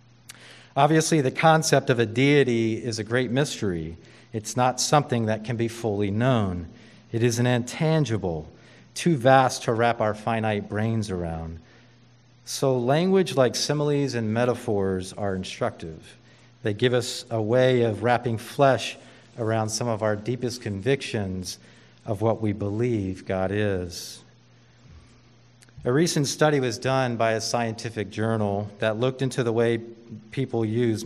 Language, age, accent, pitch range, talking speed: English, 40-59, American, 110-125 Hz, 145 wpm